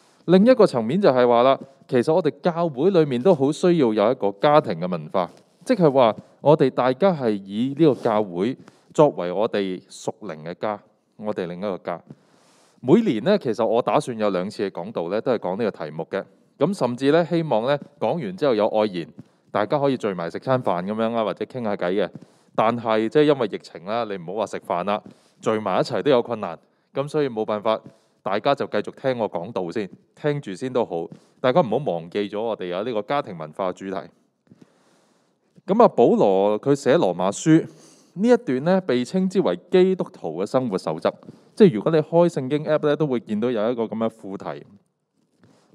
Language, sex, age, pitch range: Chinese, male, 20-39, 105-170 Hz